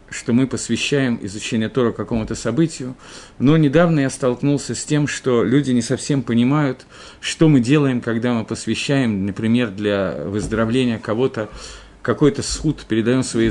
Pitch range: 110-145 Hz